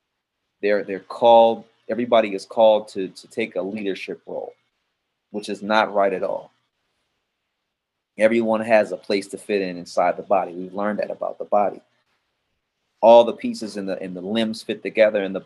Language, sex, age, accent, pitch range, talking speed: English, male, 30-49, American, 95-120 Hz, 180 wpm